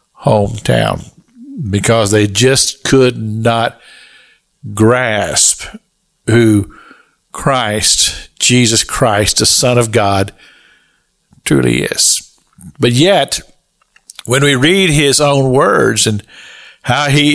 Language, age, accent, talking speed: English, 50-69, American, 95 wpm